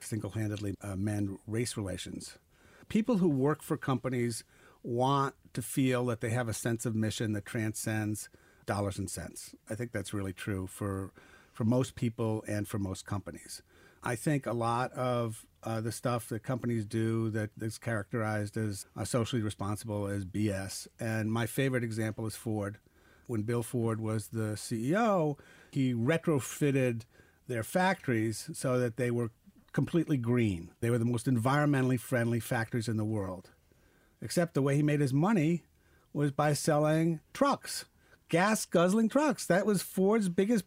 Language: English